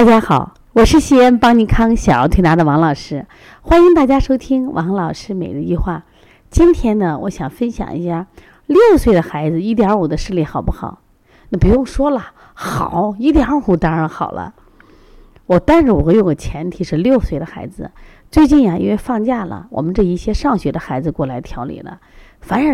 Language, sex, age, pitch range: Chinese, female, 30-49, 175-270 Hz